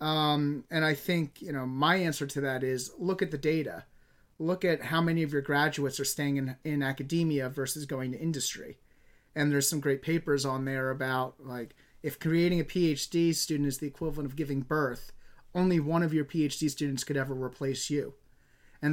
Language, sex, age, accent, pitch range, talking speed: English, male, 30-49, American, 135-165 Hz, 195 wpm